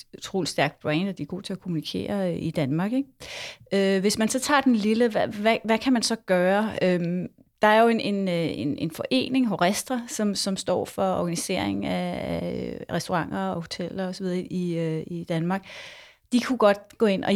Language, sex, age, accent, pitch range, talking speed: Danish, female, 30-49, native, 180-220 Hz, 185 wpm